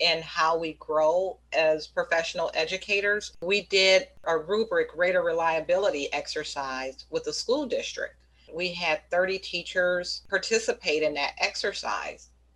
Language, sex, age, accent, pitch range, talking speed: English, female, 40-59, American, 155-200 Hz, 125 wpm